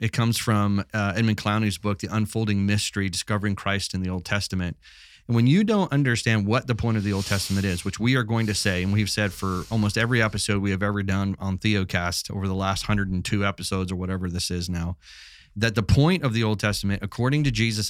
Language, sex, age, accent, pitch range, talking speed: English, male, 30-49, American, 95-120 Hz, 230 wpm